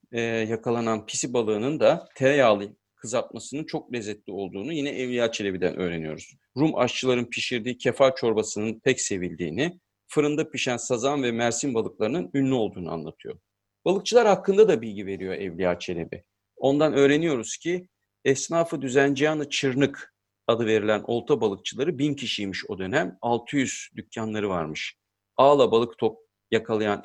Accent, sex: native, male